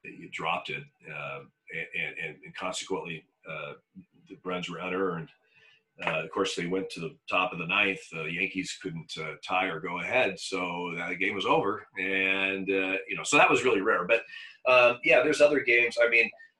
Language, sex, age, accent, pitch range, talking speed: English, male, 40-59, American, 90-140 Hz, 200 wpm